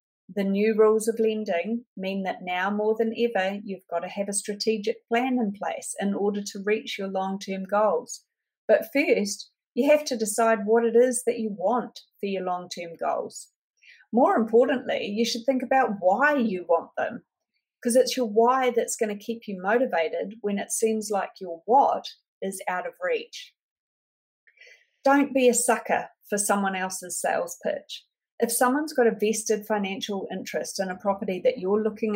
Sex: female